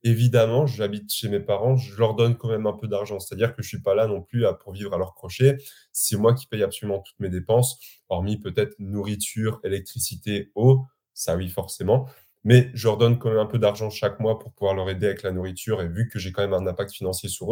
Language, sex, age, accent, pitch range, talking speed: French, male, 20-39, French, 100-125 Hz, 245 wpm